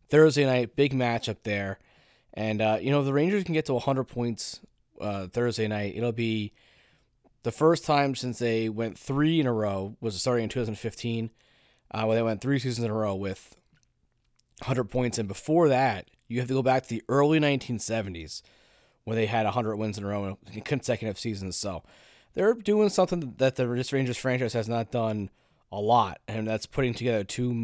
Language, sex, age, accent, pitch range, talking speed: English, male, 20-39, American, 110-130 Hz, 190 wpm